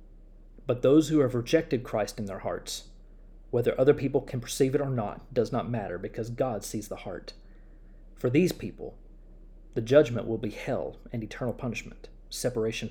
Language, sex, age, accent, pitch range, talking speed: English, male, 40-59, American, 105-140 Hz, 170 wpm